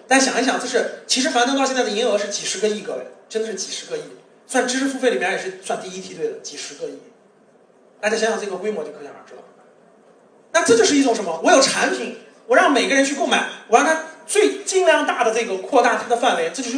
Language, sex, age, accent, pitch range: Chinese, male, 30-49, native, 225-295 Hz